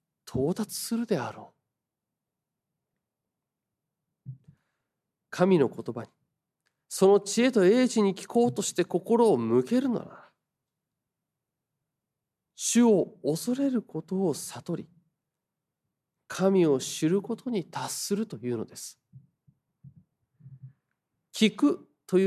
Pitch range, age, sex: 140-190 Hz, 40-59, male